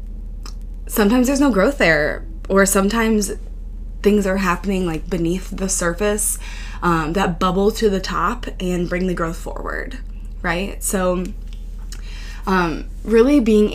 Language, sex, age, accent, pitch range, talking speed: English, female, 20-39, American, 160-215 Hz, 130 wpm